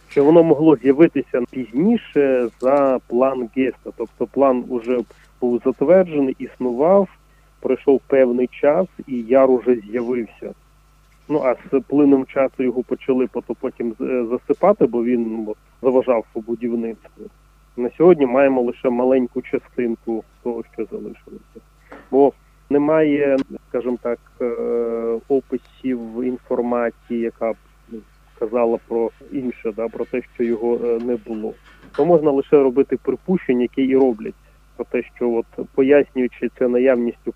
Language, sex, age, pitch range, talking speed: Ukrainian, male, 30-49, 120-140 Hz, 125 wpm